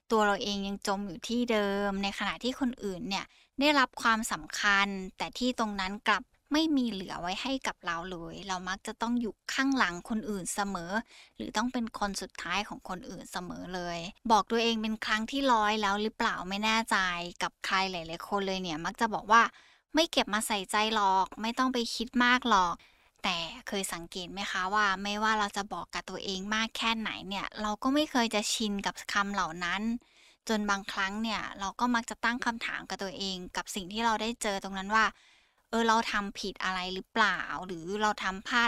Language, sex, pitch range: Thai, female, 190-230 Hz